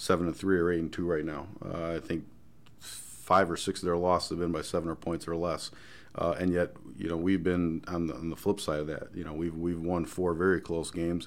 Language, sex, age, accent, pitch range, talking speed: English, male, 40-59, American, 85-95 Hz, 265 wpm